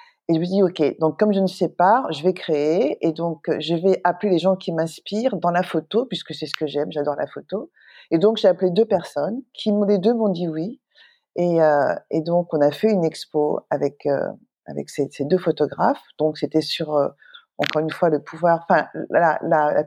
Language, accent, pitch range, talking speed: French, French, 160-210 Hz, 225 wpm